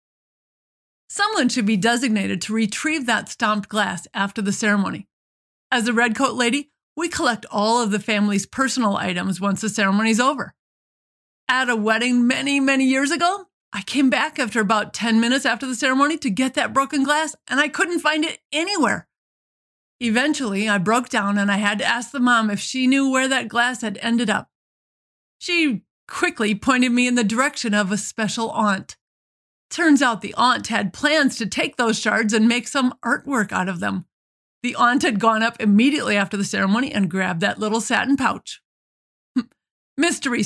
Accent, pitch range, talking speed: American, 215-275 Hz, 180 wpm